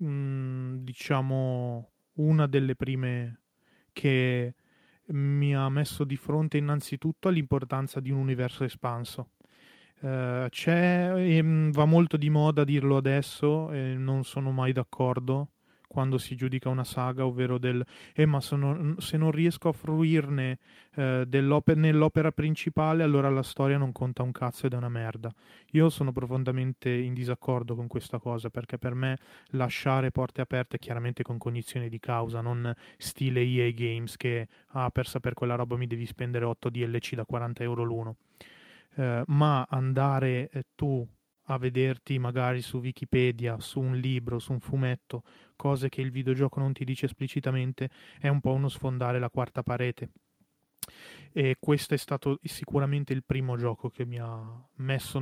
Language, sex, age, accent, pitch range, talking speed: Italian, male, 30-49, native, 125-140 Hz, 155 wpm